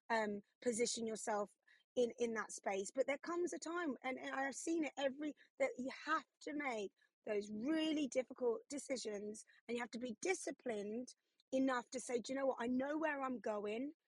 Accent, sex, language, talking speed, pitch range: British, female, English, 190 wpm, 220-265 Hz